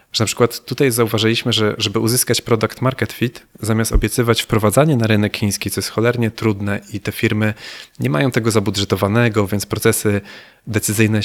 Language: Polish